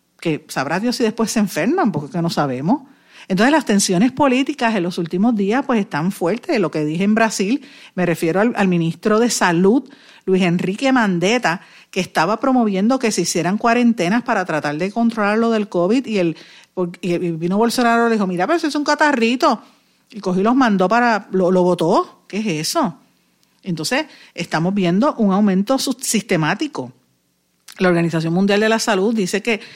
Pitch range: 170-230 Hz